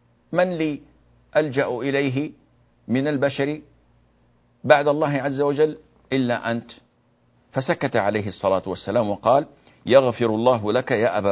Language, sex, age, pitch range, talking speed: Arabic, male, 50-69, 105-140 Hz, 115 wpm